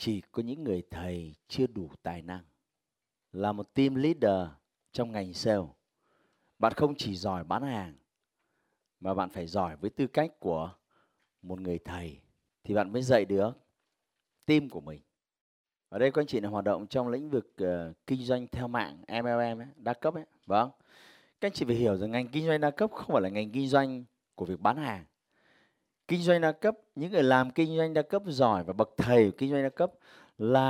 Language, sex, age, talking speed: Vietnamese, male, 30-49, 205 wpm